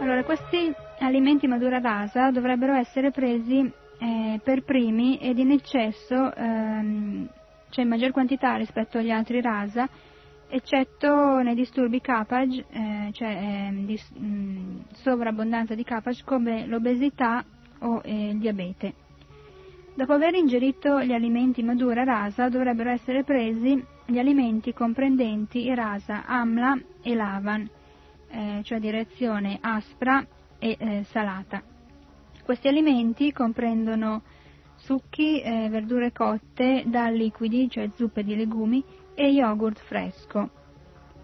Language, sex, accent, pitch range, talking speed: Italian, female, native, 210-255 Hz, 120 wpm